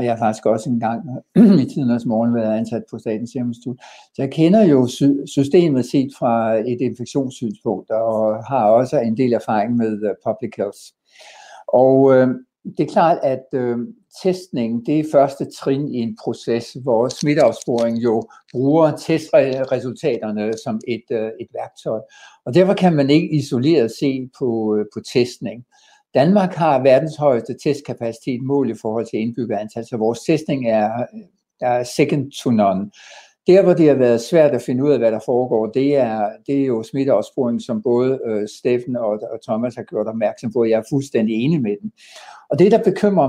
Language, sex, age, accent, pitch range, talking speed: Danish, male, 60-79, native, 115-150 Hz, 170 wpm